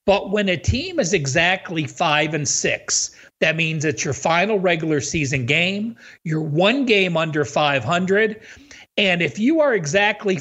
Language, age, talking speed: English, 50-69, 155 wpm